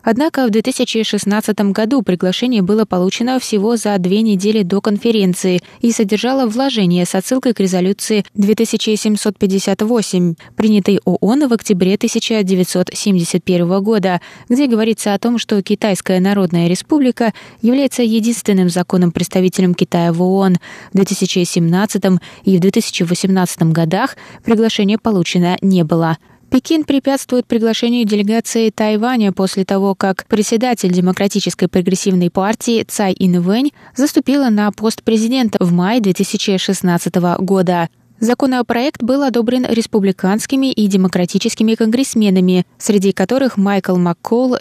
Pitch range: 185-230 Hz